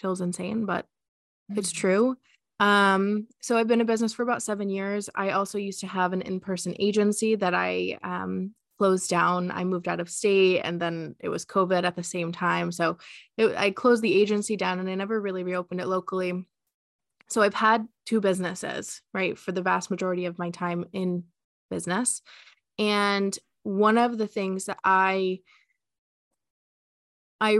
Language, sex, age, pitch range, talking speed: English, female, 20-39, 180-205 Hz, 170 wpm